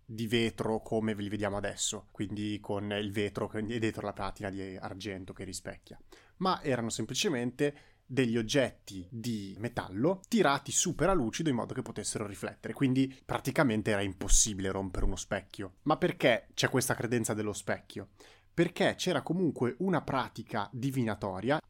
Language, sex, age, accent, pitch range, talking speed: Italian, male, 20-39, native, 105-145 Hz, 150 wpm